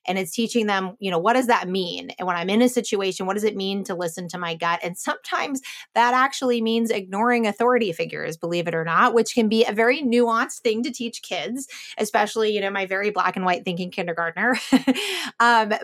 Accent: American